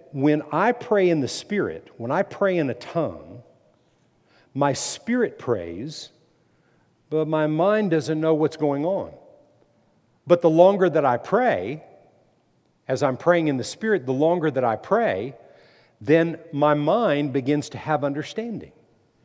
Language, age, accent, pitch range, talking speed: English, 60-79, American, 145-195 Hz, 145 wpm